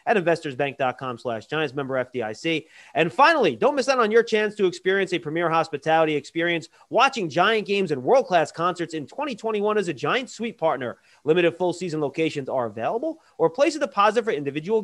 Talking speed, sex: 180 wpm, male